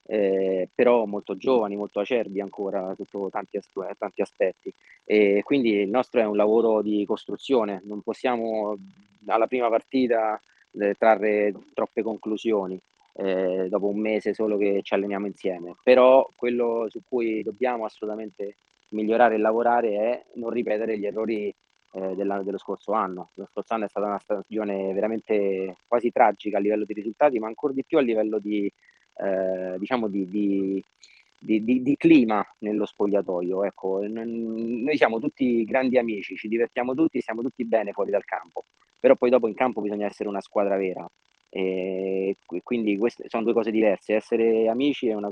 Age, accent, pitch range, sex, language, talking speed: 30-49, native, 100-115 Hz, male, Italian, 165 wpm